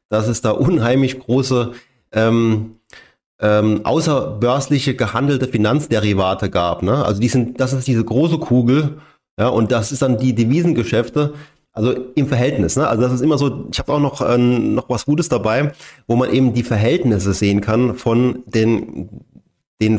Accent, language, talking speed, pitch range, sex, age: German, German, 165 wpm, 110-130 Hz, male, 30-49